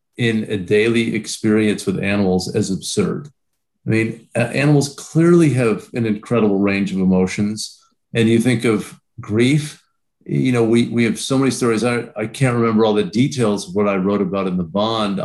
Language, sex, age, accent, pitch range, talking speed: English, male, 50-69, American, 110-135 Hz, 180 wpm